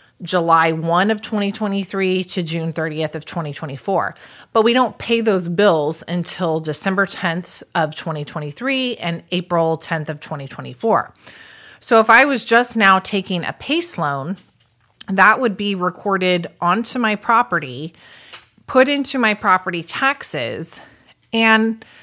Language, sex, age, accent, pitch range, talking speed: English, female, 30-49, American, 165-220 Hz, 130 wpm